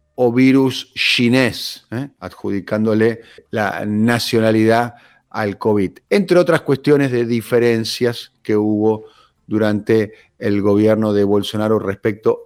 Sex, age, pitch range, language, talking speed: male, 50-69, 110-140 Hz, Spanish, 105 wpm